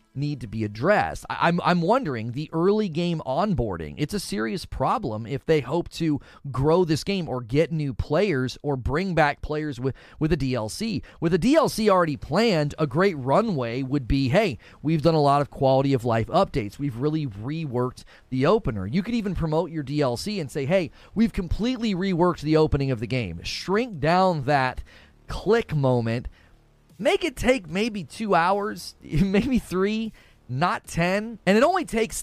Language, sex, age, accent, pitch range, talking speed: English, male, 30-49, American, 130-185 Hz, 175 wpm